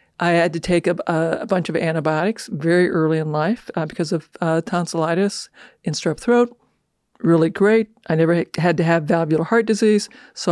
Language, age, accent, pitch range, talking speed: English, 50-69, American, 165-195 Hz, 185 wpm